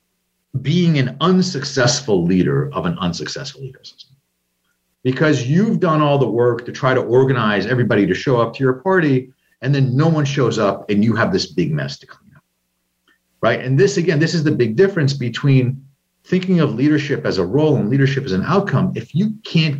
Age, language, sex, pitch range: 50-69, English, male, 125-160 Hz